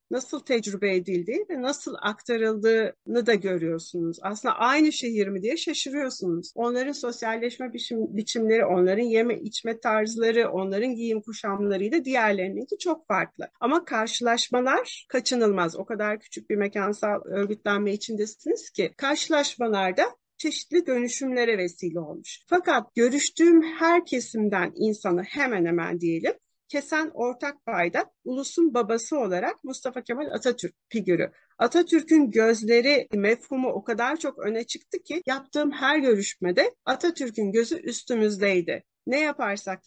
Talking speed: 120 wpm